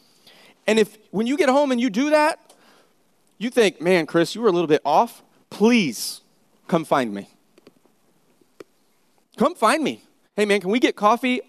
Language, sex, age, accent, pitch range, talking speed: English, male, 30-49, American, 205-260 Hz, 170 wpm